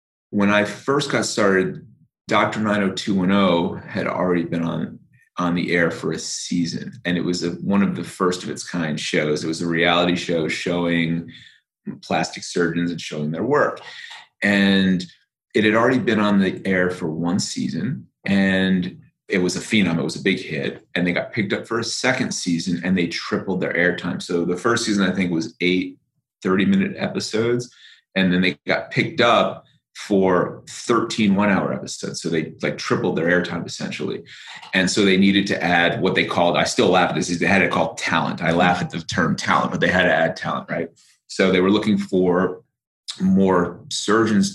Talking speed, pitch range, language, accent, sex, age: 190 wpm, 85-100 Hz, English, American, male, 30-49